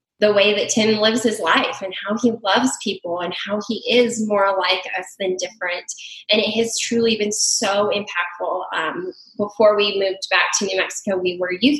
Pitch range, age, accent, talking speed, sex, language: 185-220 Hz, 10-29, American, 200 wpm, female, English